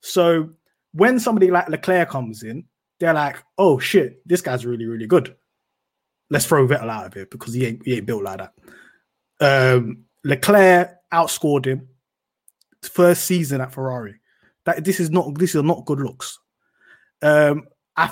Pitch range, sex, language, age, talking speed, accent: 120-155 Hz, male, English, 20-39, 160 wpm, British